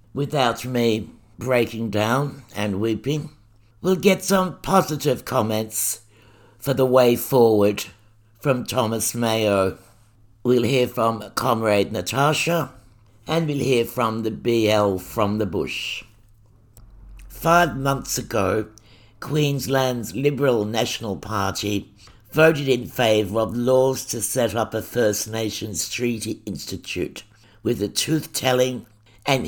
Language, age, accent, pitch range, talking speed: English, 60-79, British, 105-130 Hz, 115 wpm